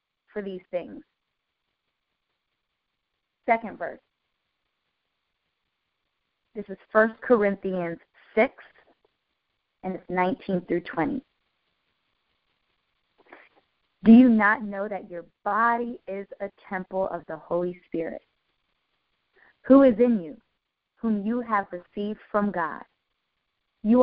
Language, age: English, 20-39